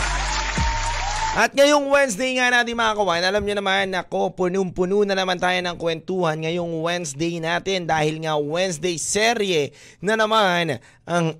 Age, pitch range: 20-39, 140-190 Hz